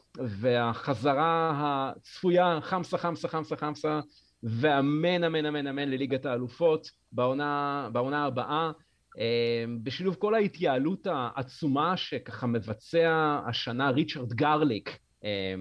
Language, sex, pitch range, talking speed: Hebrew, male, 110-150 Hz, 95 wpm